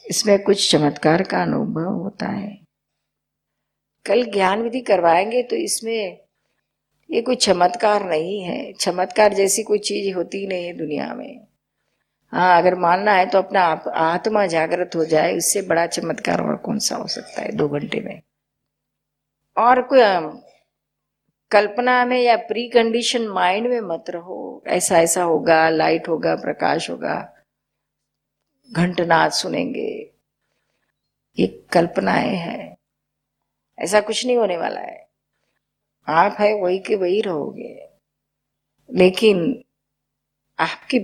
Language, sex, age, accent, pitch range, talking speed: Hindi, female, 50-69, native, 170-230 Hz, 125 wpm